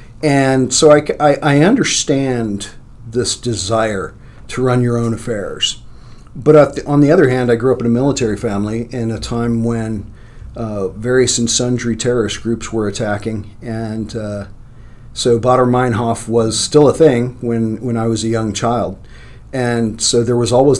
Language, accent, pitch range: English, American, 115-130 Hz